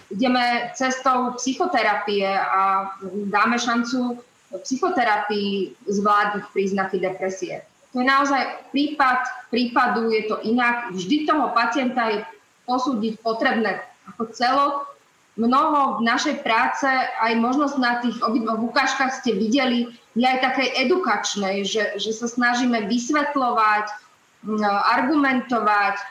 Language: Slovak